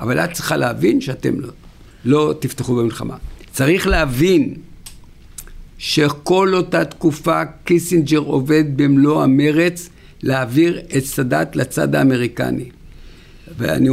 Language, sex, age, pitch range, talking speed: Hebrew, male, 60-79, 125-155 Hz, 105 wpm